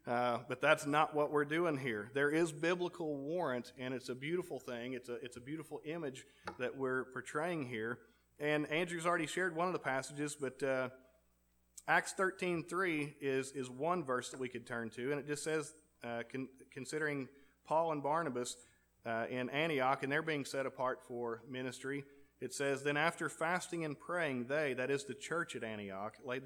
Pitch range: 125-150 Hz